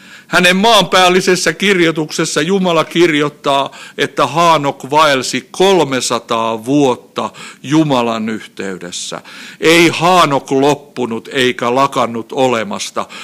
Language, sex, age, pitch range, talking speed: Finnish, male, 60-79, 125-180 Hz, 80 wpm